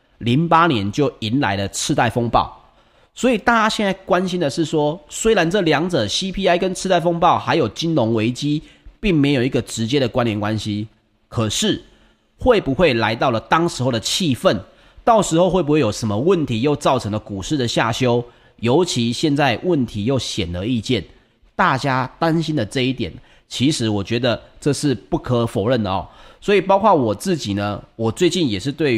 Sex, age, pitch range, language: male, 30-49, 110-165 Hz, Chinese